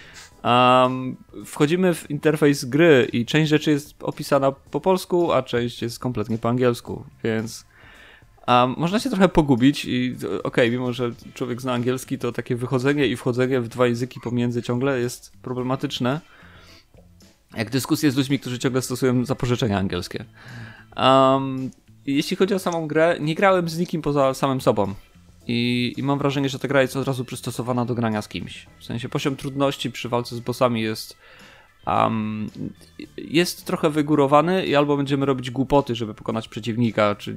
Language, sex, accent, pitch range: Polish, male, native, 115-140 Hz